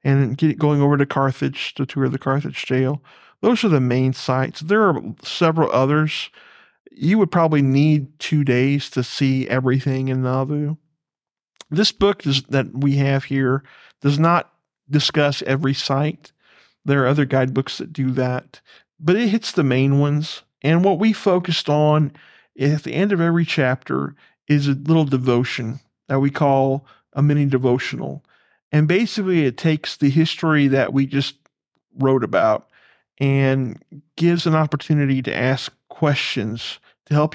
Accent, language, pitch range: American, English, 130-155 Hz